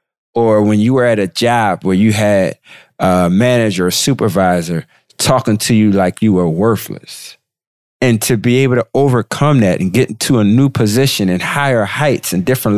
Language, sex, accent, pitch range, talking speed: English, male, American, 100-125 Hz, 185 wpm